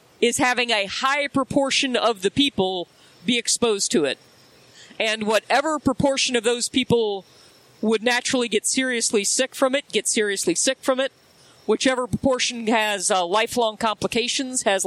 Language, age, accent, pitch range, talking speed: English, 40-59, American, 205-250 Hz, 150 wpm